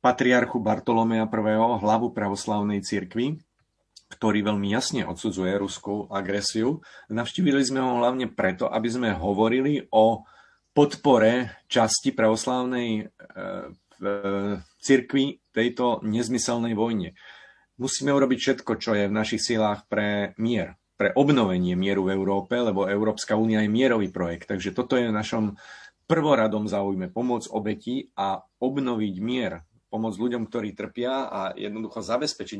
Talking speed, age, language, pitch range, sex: 125 wpm, 40-59, Slovak, 105-125 Hz, male